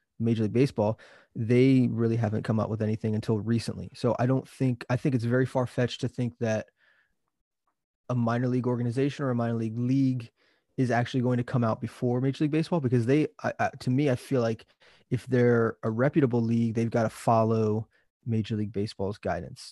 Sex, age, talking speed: male, 20-39, 190 wpm